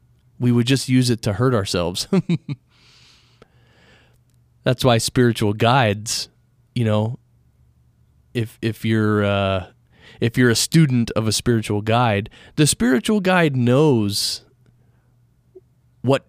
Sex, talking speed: male, 115 wpm